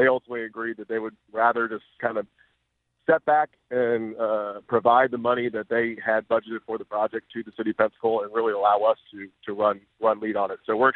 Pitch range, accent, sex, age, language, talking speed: 105-120 Hz, American, male, 40-59, English, 230 wpm